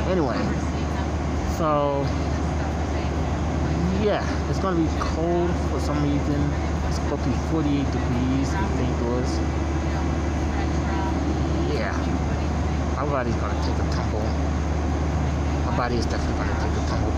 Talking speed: 120 wpm